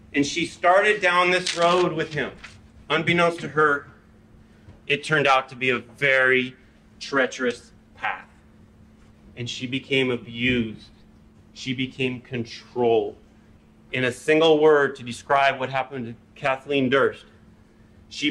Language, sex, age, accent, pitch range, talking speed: English, male, 30-49, American, 125-160 Hz, 130 wpm